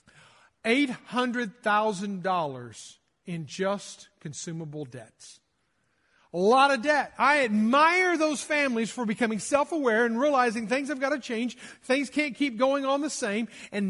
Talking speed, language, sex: 130 wpm, English, male